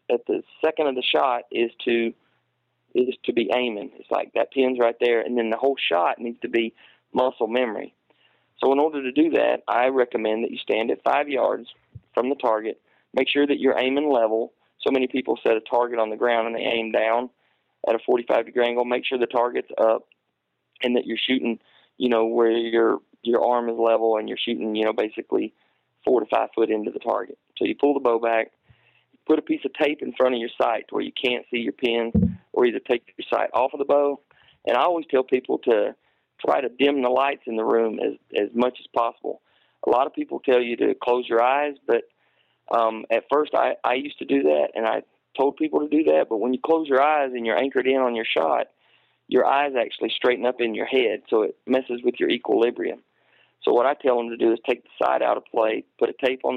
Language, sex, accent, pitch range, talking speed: English, male, American, 115-140 Hz, 235 wpm